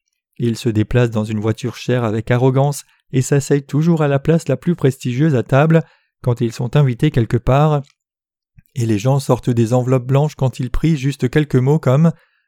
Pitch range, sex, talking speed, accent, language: 120-150 Hz, male, 190 wpm, French, French